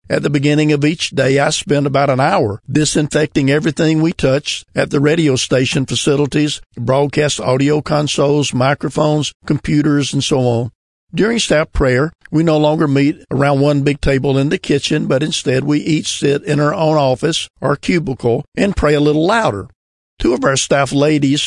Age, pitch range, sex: 50-69, 130-150 Hz, male